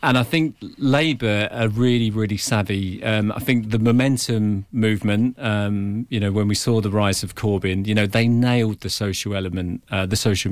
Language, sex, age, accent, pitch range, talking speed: English, male, 40-59, British, 100-115 Hz, 195 wpm